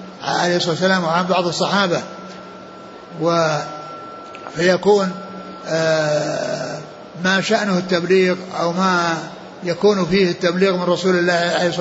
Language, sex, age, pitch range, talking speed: Arabic, male, 60-79, 170-195 Hz, 95 wpm